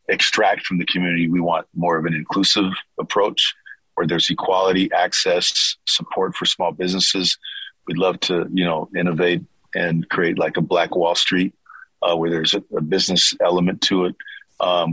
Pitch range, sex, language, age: 85-95 Hz, male, English, 40-59